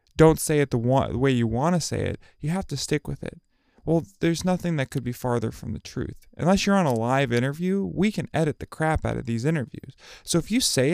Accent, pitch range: American, 125-180 Hz